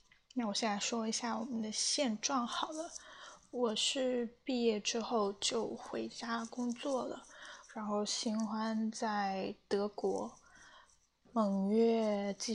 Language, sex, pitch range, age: Chinese, female, 200-230 Hz, 10-29